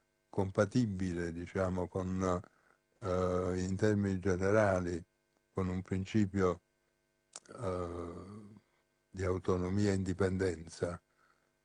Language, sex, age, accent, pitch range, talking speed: Italian, male, 60-79, native, 90-110 Hz, 75 wpm